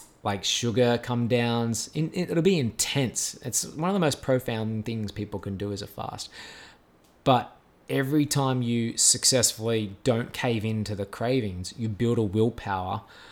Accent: Australian